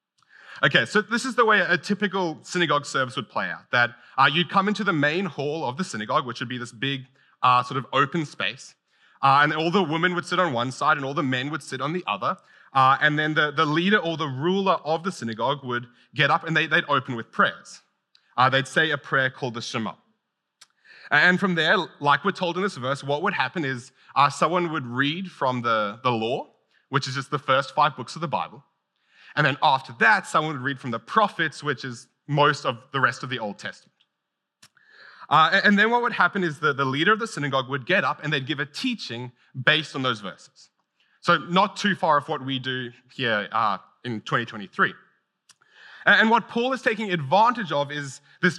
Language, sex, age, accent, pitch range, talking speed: English, male, 30-49, Australian, 135-185 Hz, 220 wpm